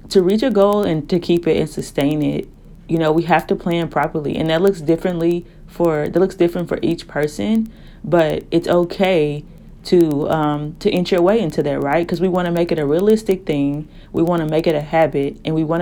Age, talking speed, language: 30-49, 230 wpm, English